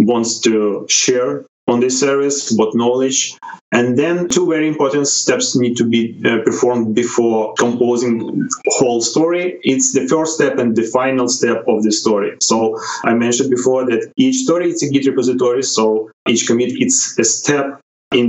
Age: 30-49